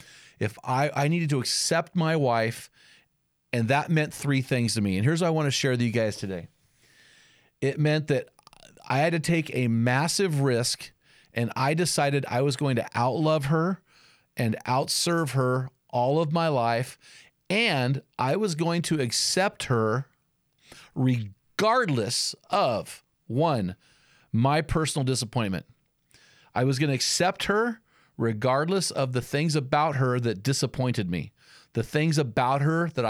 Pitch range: 120-155 Hz